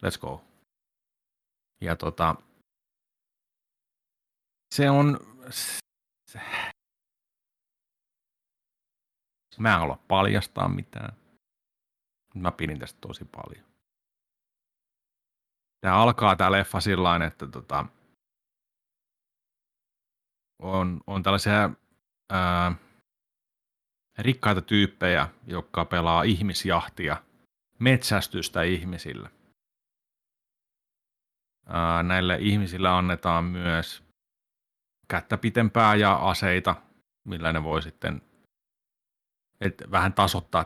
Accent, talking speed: native, 70 wpm